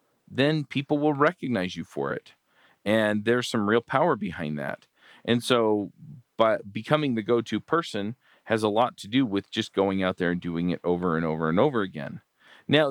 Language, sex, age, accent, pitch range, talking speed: English, male, 40-59, American, 105-145 Hz, 190 wpm